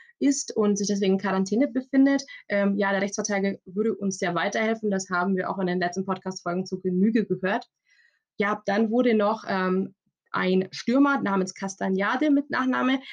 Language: German